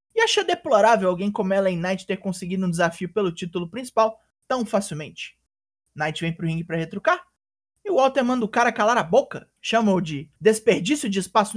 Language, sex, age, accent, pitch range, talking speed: Portuguese, male, 20-39, Brazilian, 170-225 Hz, 185 wpm